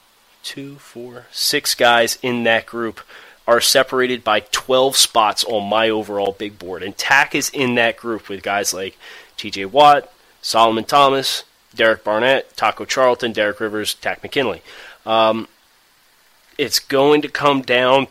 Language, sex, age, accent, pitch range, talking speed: English, male, 30-49, American, 110-135 Hz, 145 wpm